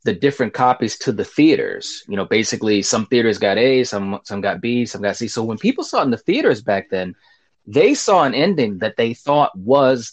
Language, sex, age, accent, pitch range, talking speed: English, male, 30-49, American, 100-135 Hz, 225 wpm